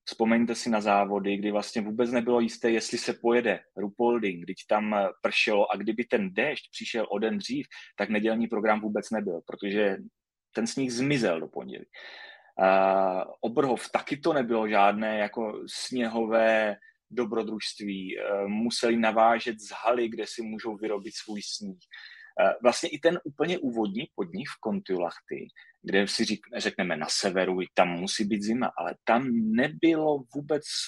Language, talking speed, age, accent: Czech, 155 wpm, 30-49, native